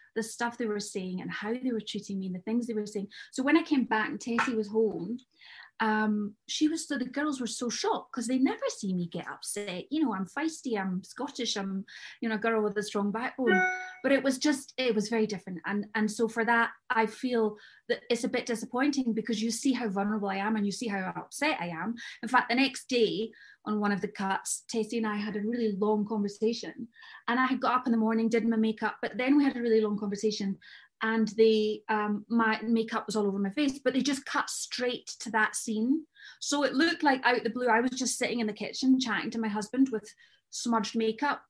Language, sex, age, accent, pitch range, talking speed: English, female, 20-39, British, 215-280 Hz, 240 wpm